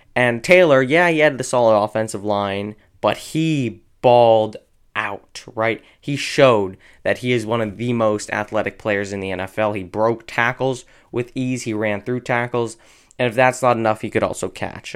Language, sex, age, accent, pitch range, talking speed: English, male, 20-39, American, 105-120 Hz, 185 wpm